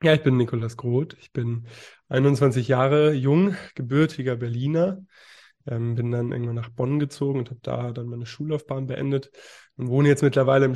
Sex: male